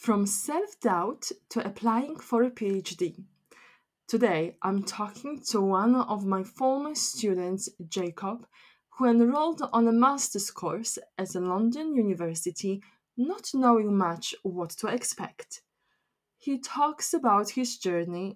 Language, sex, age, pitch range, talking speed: English, female, 20-39, 185-260 Hz, 125 wpm